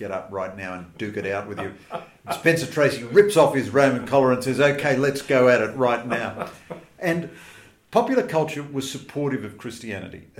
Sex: male